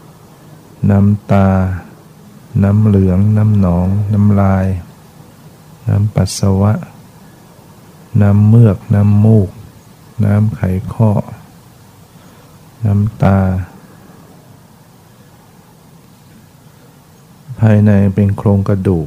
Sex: male